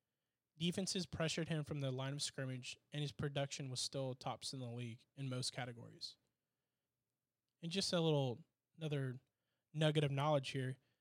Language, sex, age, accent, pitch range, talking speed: English, male, 20-39, American, 130-155 Hz, 160 wpm